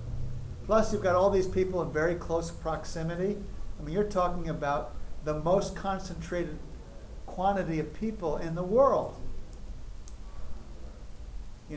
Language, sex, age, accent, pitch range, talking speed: English, male, 50-69, American, 140-180 Hz, 125 wpm